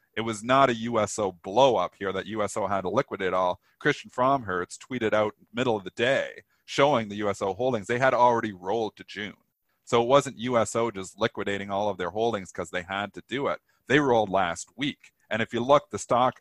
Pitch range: 105-150 Hz